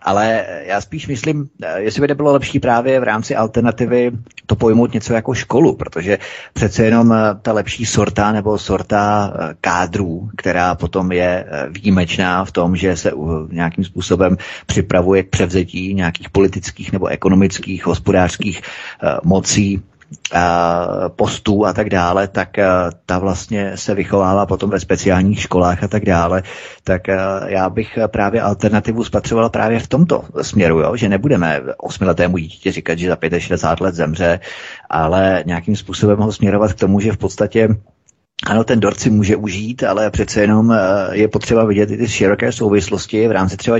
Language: Czech